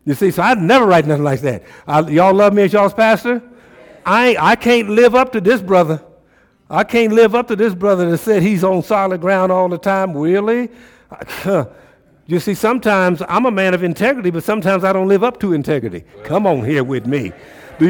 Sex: male